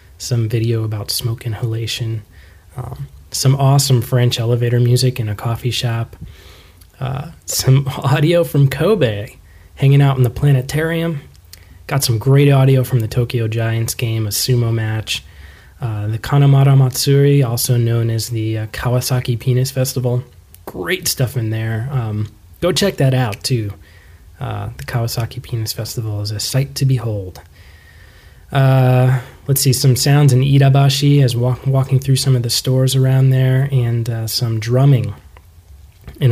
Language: English